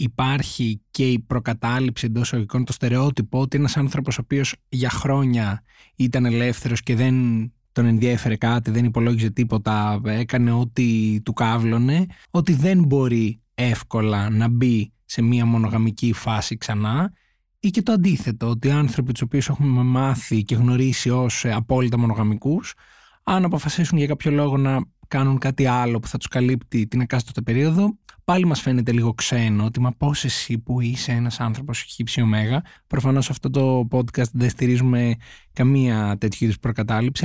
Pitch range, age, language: 115-140 Hz, 20-39, Greek